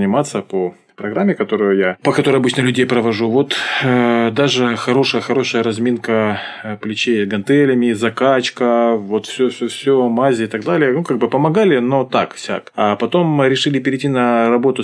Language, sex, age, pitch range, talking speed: Russian, male, 20-39, 110-135 Hz, 165 wpm